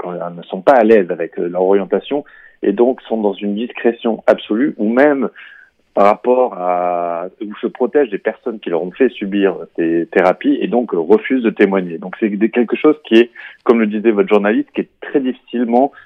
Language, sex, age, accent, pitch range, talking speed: Italian, male, 30-49, French, 95-125 Hz, 195 wpm